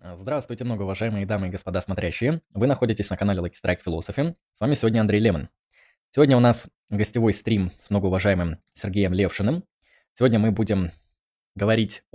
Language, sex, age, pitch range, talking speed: Russian, male, 20-39, 95-115 Hz, 160 wpm